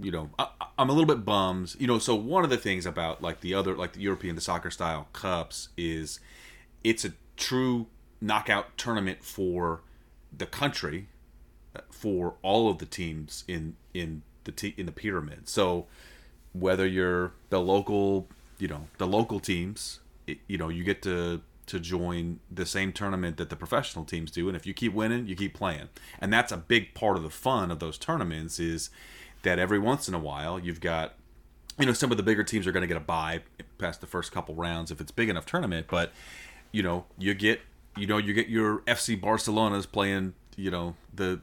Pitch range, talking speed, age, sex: 85-105 Hz, 205 wpm, 30-49, male